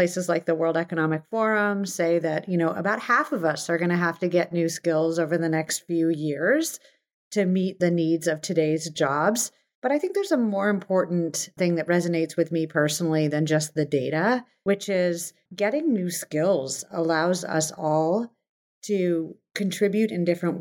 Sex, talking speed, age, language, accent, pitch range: female, 185 wpm, 40-59, English, American, 165-205 Hz